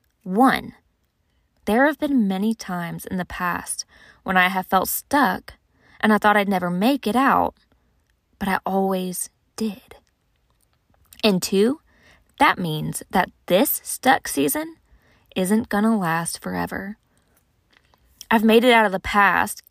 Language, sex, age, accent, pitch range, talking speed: English, female, 20-39, American, 185-235 Hz, 140 wpm